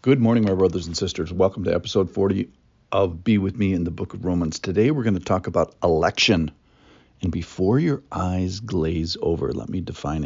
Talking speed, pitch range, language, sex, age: 205 wpm, 85-115 Hz, English, male, 50-69